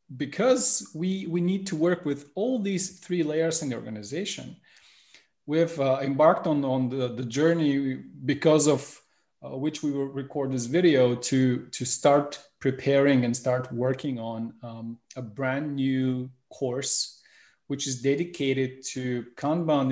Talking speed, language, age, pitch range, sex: 150 wpm, English, 30-49, 125-155 Hz, male